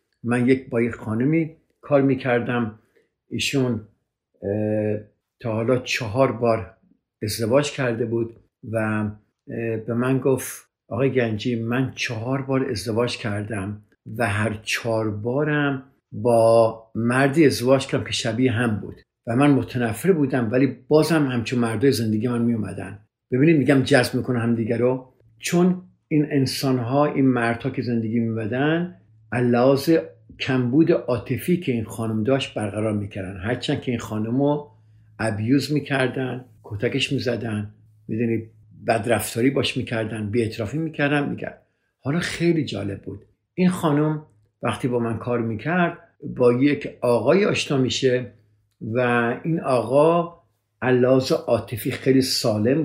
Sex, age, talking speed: male, 50-69, 125 wpm